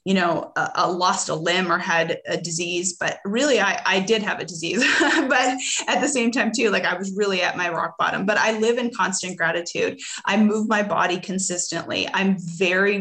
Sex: female